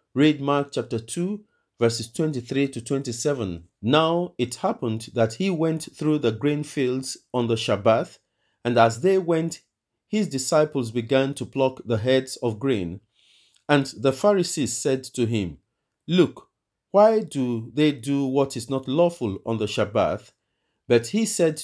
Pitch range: 120-155 Hz